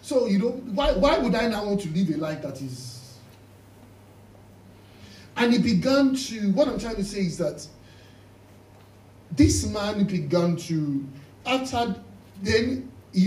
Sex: male